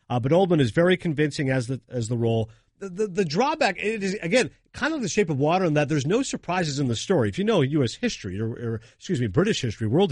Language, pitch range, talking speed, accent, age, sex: English, 130-190 Hz, 260 wpm, American, 50-69, male